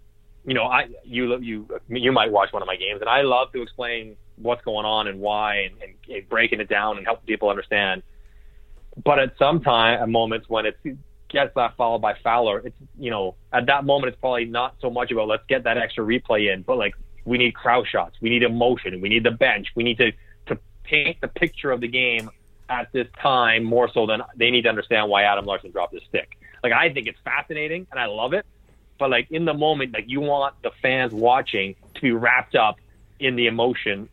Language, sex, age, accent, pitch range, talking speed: English, male, 30-49, American, 105-130 Hz, 225 wpm